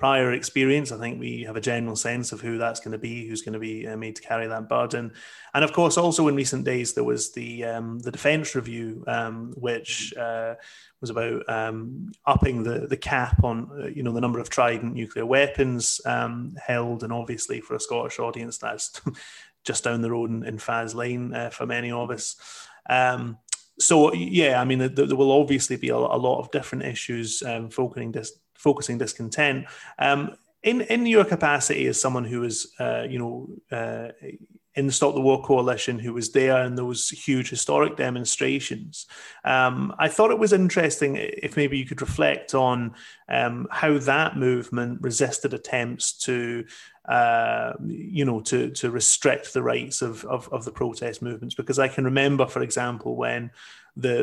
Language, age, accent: English, 30-49, British